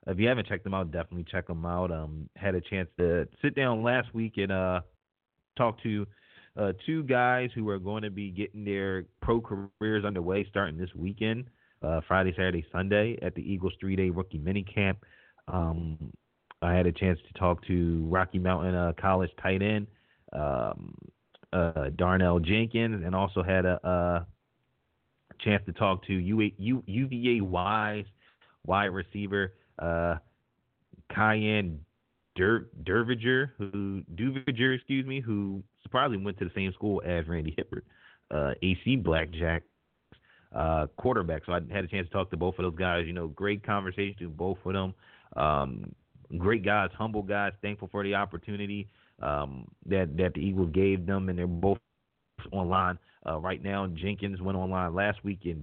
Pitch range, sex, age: 90-105 Hz, male, 30-49